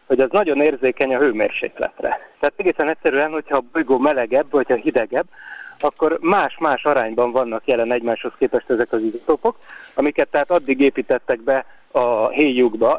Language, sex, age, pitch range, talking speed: Hungarian, male, 30-49, 125-155 Hz, 150 wpm